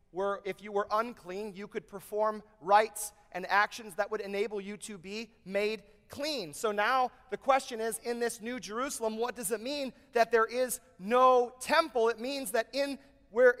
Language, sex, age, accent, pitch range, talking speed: English, male, 30-49, American, 210-270 Hz, 185 wpm